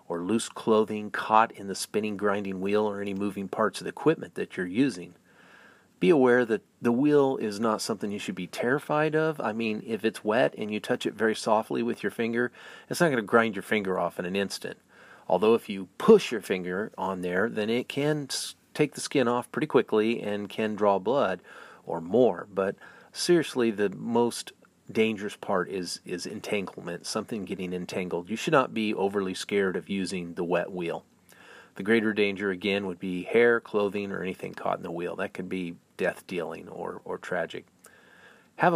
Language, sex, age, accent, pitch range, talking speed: English, male, 40-59, American, 100-120 Hz, 195 wpm